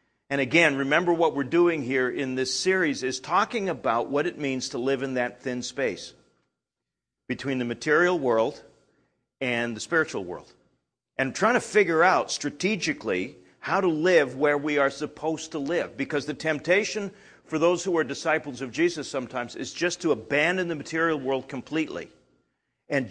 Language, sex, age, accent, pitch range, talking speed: English, male, 50-69, American, 135-180 Hz, 170 wpm